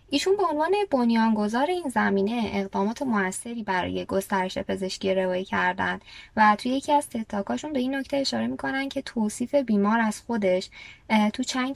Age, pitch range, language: 20-39, 200-250 Hz, Persian